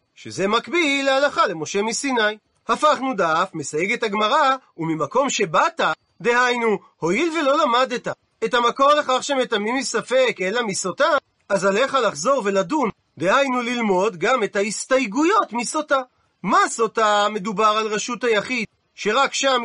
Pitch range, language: 205-275 Hz, Hebrew